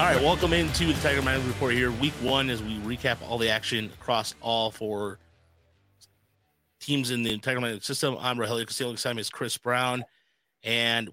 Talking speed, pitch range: 185 wpm, 105-130 Hz